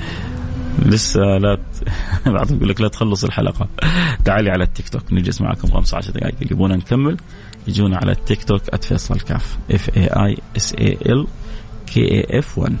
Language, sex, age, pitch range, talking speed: English, male, 30-49, 105-165 Hz, 100 wpm